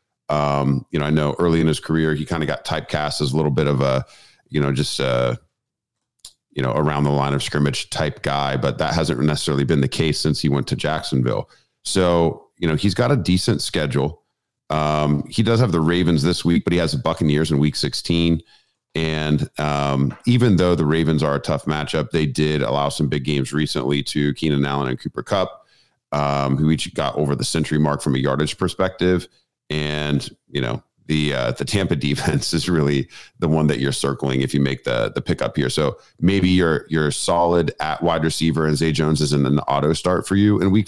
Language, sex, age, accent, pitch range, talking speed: English, male, 40-59, American, 70-80 Hz, 215 wpm